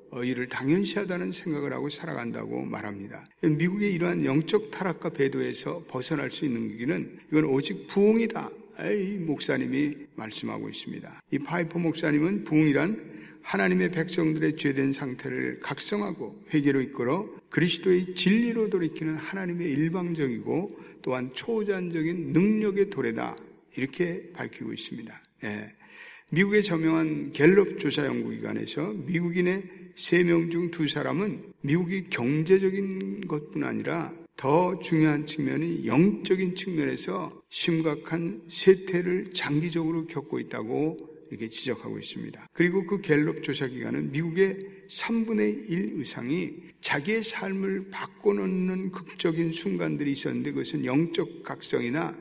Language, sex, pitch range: Korean, male, 145-190 Hz